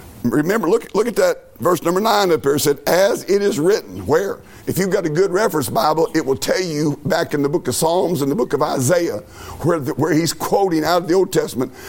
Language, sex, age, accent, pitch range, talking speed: English, male, 50-69, American, 135-190 Hz, 235 wpm